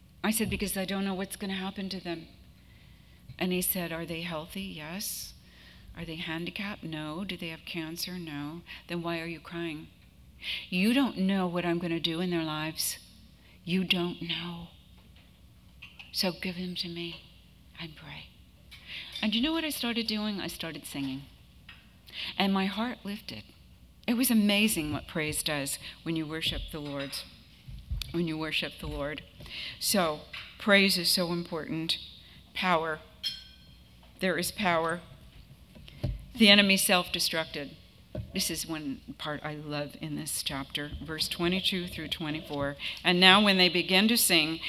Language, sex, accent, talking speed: English, female, American, 155 wpm